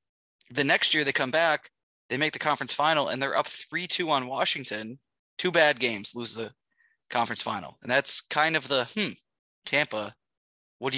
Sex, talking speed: male, 180 wpm